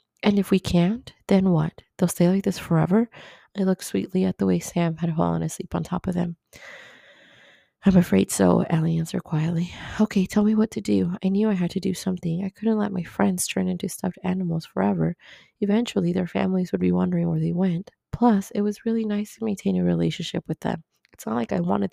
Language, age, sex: English, 20-39, female